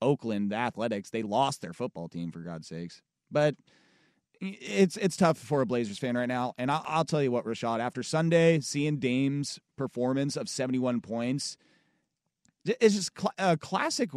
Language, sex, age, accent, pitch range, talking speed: English, male, 30-49, American, 125-165 Hz, 175 wpm